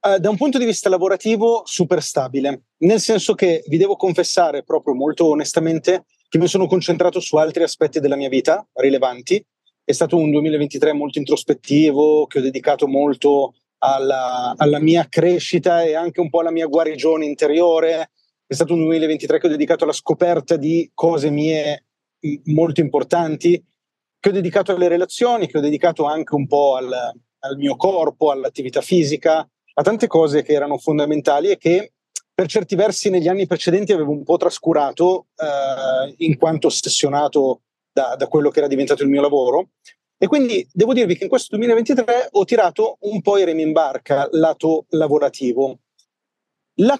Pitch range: 145-185 Hz